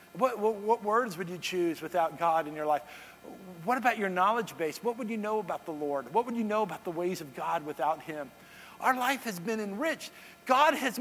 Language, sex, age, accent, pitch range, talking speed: English, male, 50-69, American, 175-245 Hz, 230 wpm